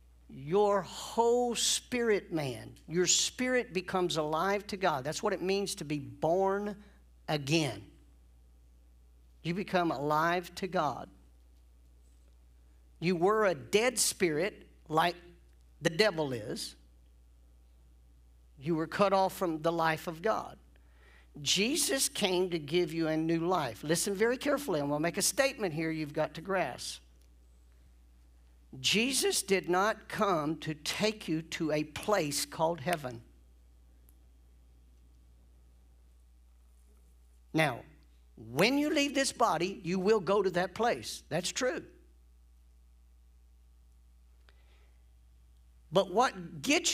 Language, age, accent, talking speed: English, 50-69, American, 115 wpm